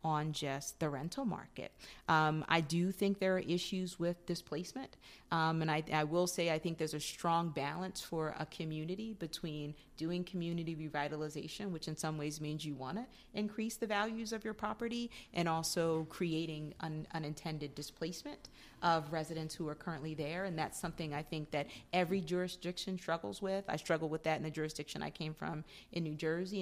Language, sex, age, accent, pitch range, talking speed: English, female, 30-49, American, 150-175 Hz, 185 wpm